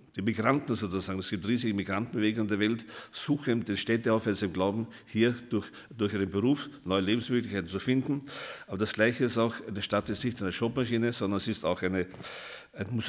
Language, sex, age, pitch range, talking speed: German, male, 50-69, 100-120 Hz, 195 wpm